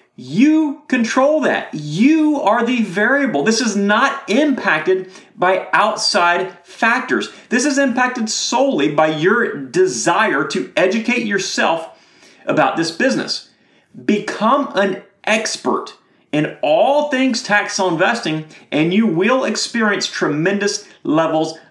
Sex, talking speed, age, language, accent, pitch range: male, 115 wpm, 30-49, English, American, 185-265 Hz